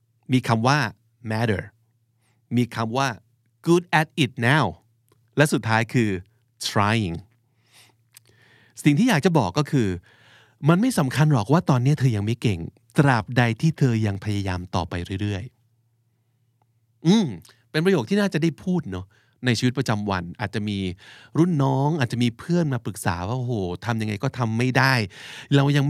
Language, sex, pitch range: Thai, male, 110-135 Hz